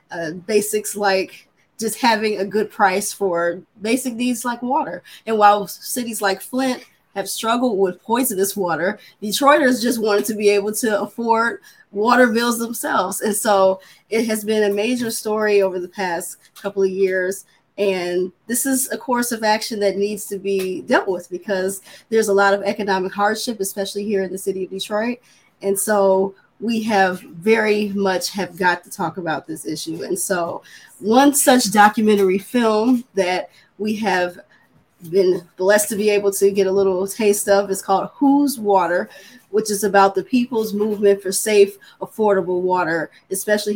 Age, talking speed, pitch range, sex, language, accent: 20-39, 165 wpm, 190-225 Hz, female, English, American